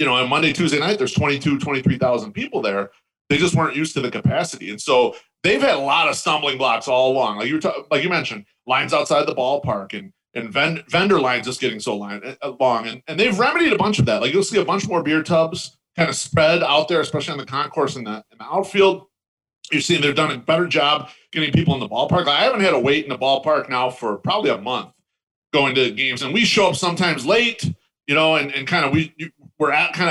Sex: male